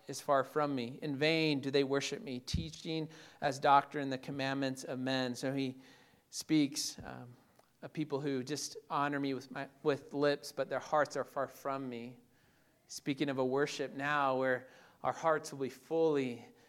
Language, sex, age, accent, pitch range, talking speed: English, male, 40-59, American, 135-160 Hz, 175 wpm